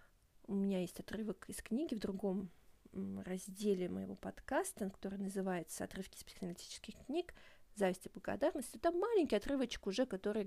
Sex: female